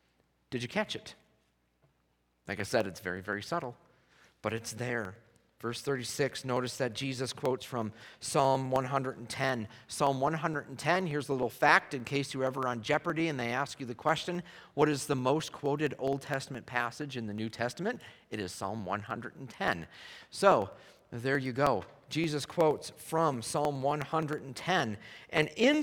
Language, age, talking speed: English, 50-69, 160 wpm